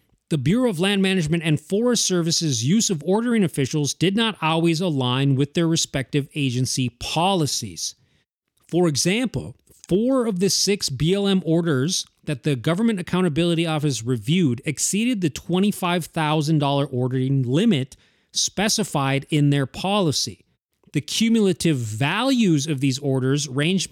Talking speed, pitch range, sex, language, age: 130 wpm, 135-180 Hz, male, English, 30-49